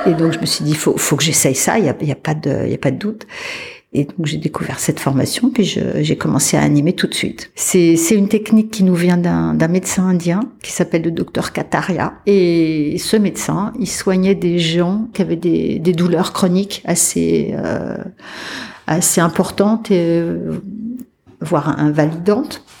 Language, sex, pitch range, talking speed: French, female, 175-215 Hz, 190 wpm